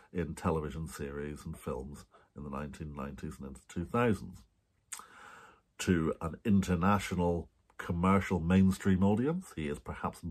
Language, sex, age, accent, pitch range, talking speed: English, male, 50-69, British, 85-110 Hz, 115 wpm